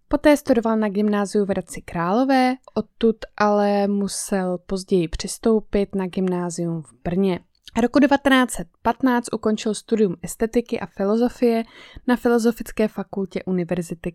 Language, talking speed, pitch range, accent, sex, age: Czech, 115 wpm, 185-225 Hz, native, female, 20-39